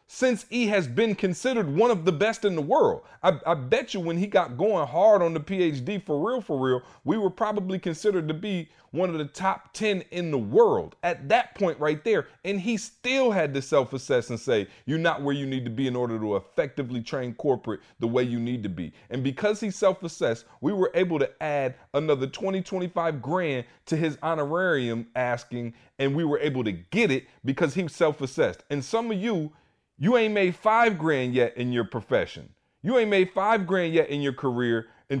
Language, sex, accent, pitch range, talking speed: English, male, American, 130-190 Hz, 215 wpm